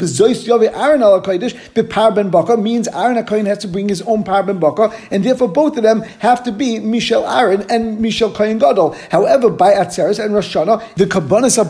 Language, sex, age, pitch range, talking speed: English, male, 50-69, 195-235 Hz, 165 wpm